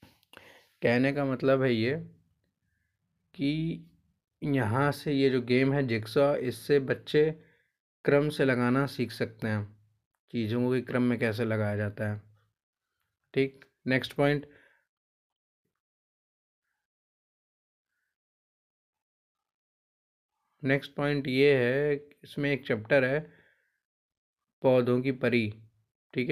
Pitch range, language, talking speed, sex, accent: 115-140 Hz, Hindi, 105 wpm, male, native